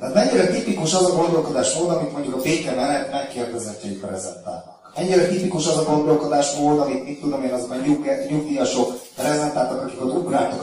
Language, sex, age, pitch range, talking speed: Hungarian, male, 30-49, 130-180 Hz, 170 wpm